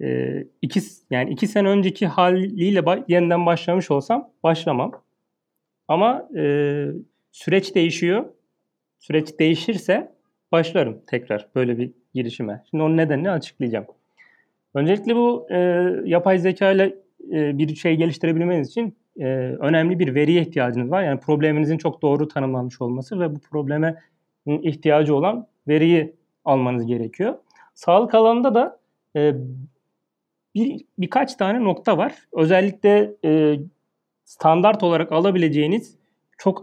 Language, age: Turkish, 40-59